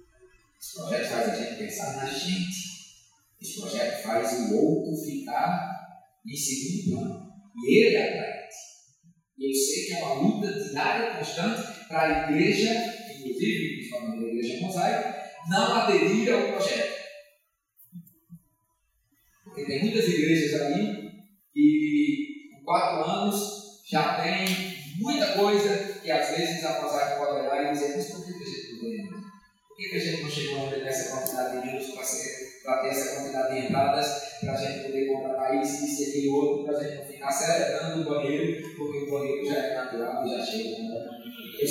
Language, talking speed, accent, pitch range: Portuguese, 160 wpm, Brazilian, 140-210 Hz